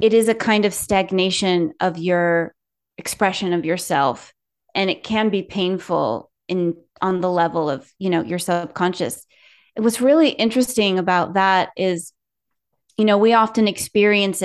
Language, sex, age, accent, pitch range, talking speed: English, female, 30-49, American, 180-220 Hz, 155 wpm